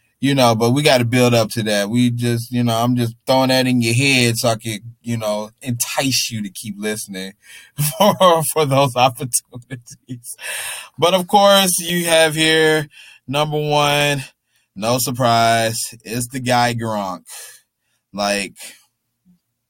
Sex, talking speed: male, 150 wpm